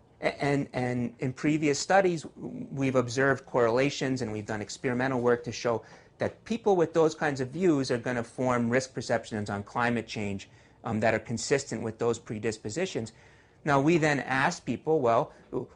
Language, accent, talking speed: English, American, 165 wpm